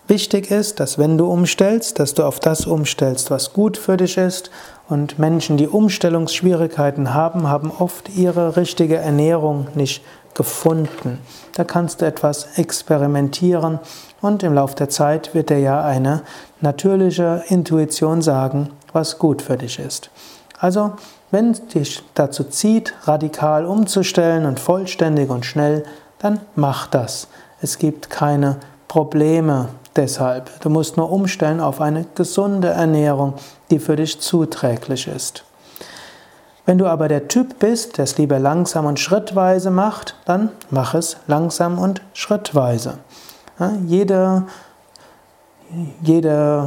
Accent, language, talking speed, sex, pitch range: German, German, 135 wpm, male, 145-180 Hz